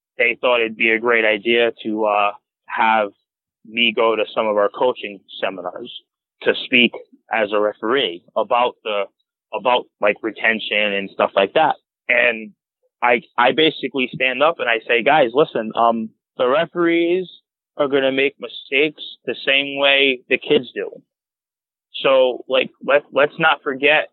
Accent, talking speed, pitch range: American, 155 wpm, 120-170 Hz